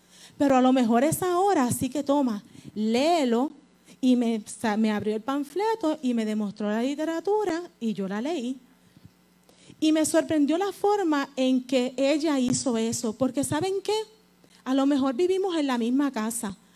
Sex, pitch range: female, 220-285 Hz